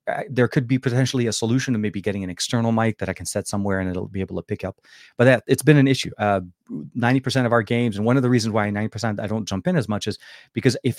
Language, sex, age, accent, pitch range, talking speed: English, male, 30-49, American, 95-125 Hz, 290 wpm